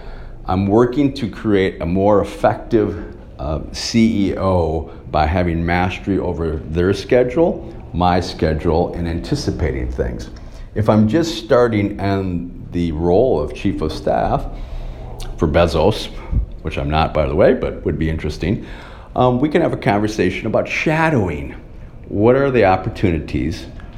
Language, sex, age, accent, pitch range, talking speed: English, male, 40-59, American, 80-100 Hz, 140 wpm